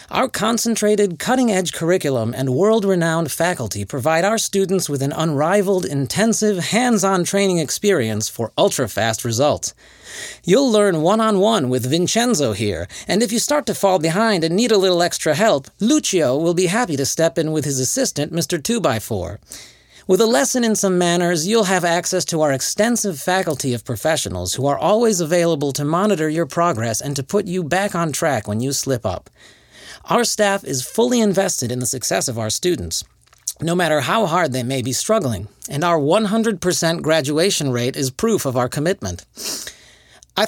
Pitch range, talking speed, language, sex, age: 130-195 Hz, 170 wpm, English, male, 40-59